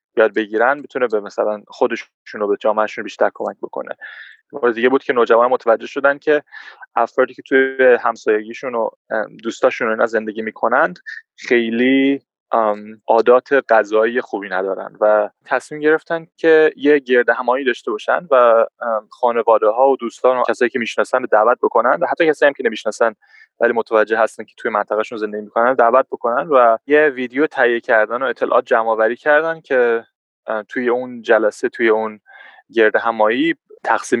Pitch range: 110-145 Hz